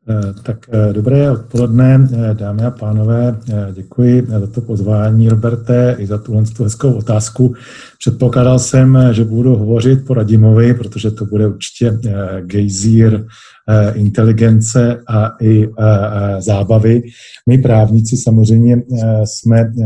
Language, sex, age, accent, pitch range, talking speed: Czech, male, 40-59, native, 105-120 Hz, 110 wpm